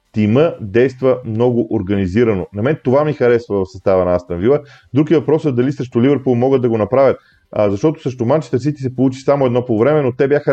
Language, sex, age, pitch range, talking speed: Bulgarian, male, 30-49, 110-140 Hz, 210 wpm